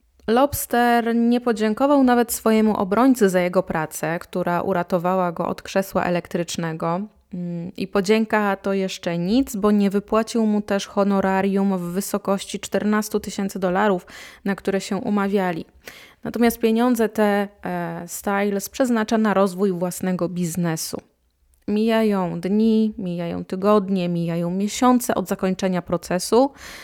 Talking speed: 120 wpm